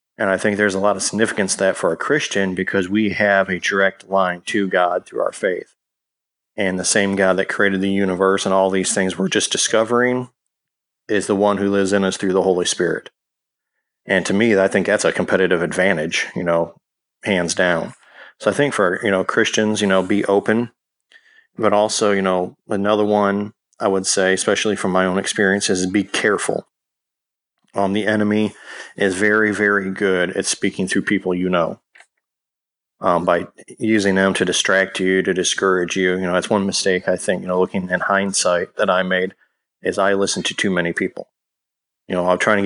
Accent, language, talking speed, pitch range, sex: American, English, 200 wpm, 95-105 Hz, male